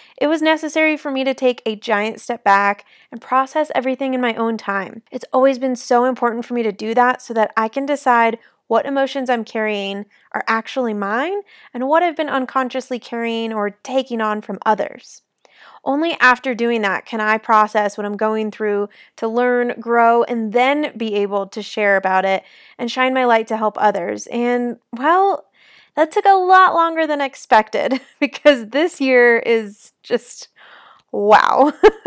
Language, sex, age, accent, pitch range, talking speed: English, female, 20-39, American, 220-285 Hz, 180 wpm